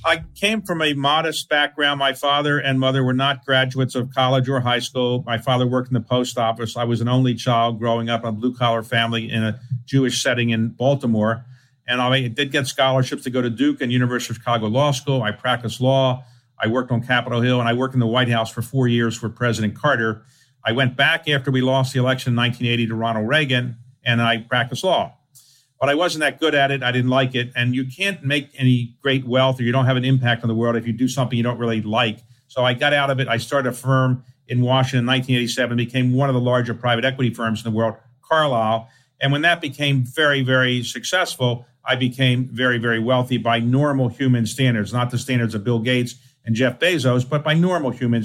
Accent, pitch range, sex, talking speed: American, 120-135 Hz, male, 230 wpm